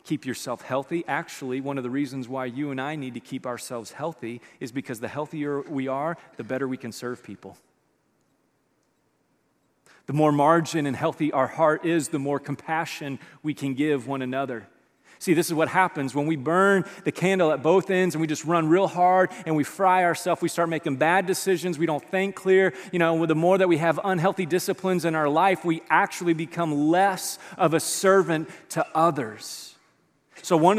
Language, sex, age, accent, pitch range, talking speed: English, male, 30-49, American, 150-195 Hz, 195 wpm